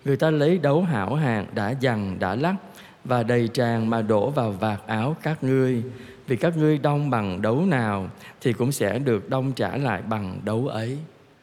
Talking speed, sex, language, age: 195 wpm, male, Vietnamese, 20-39